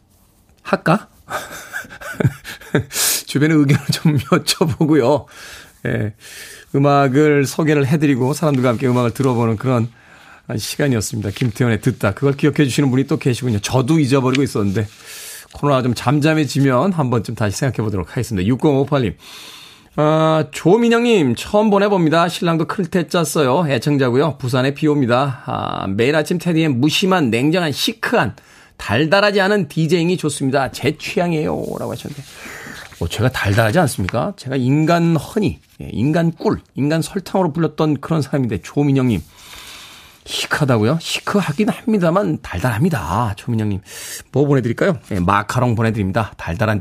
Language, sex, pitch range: Korean, male, 115-160 Hz